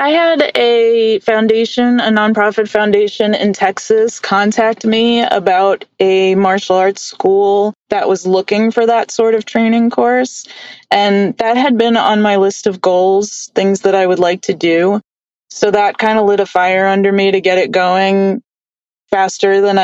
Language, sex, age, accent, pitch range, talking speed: English, female, 20-39, American, 190-225 Hz, 170 wpm